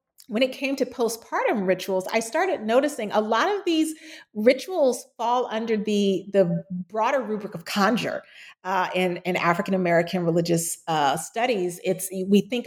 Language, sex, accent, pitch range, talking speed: English, female, American, 185-240 Hz, 150 wpm